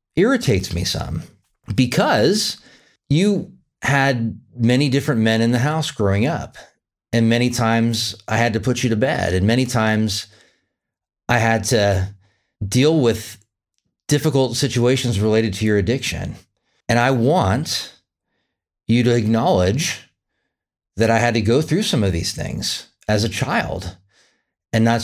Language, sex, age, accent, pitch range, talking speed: English, male, 40-59, American, 110-135 Hz, 140 wpm